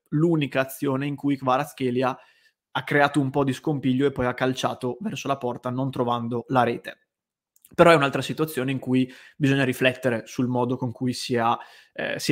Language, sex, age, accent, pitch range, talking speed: Italian, male, 20-39, native, 125-145 Hz, 175 wpm